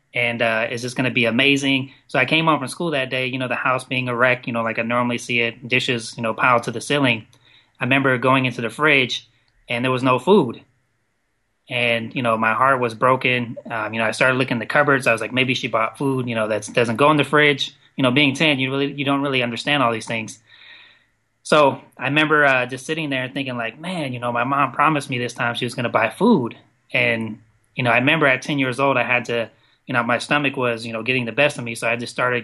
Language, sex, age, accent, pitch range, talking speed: English, male, 20-39, American, 120-140 Hz, 265 wpm